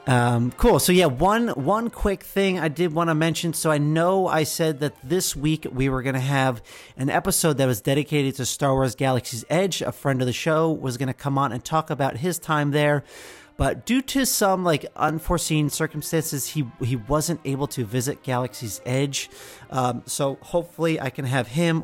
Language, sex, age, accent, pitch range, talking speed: English, male, 30-49, American, 130-165 Hz, 205 wpm